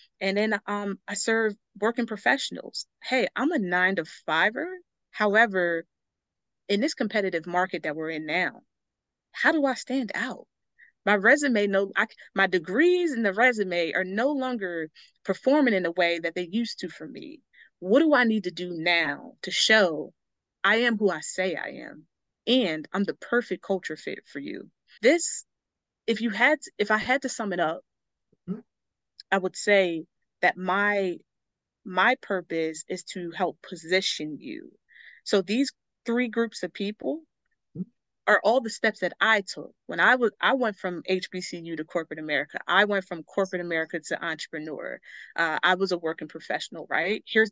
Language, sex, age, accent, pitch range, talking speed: English, female, 30-49, American, 175-235 Hz, 170 wpm